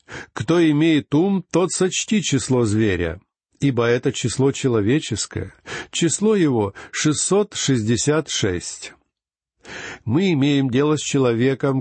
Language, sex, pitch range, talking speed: Russian, male, 120-165 Hz, 100 wpm